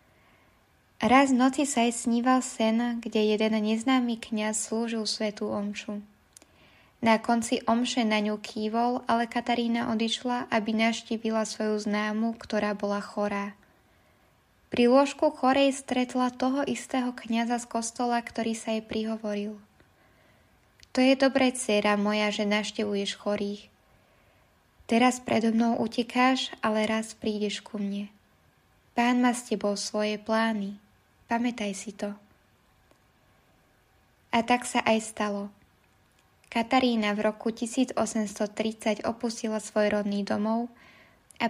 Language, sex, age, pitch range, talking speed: Slovak, female, 10-29, 210-240 Hz, 115 wpm